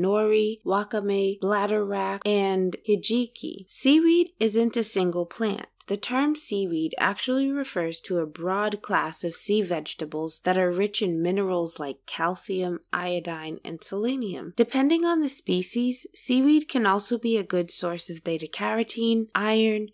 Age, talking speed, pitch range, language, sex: 20-39, 140 wpm, 175-225 Hz, English, female